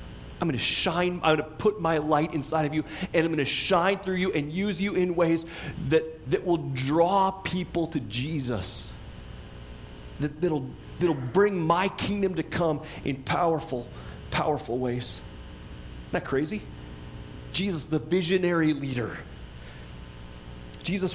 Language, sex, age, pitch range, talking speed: English, male, 30-49, 145-180 Hz, 145 wpm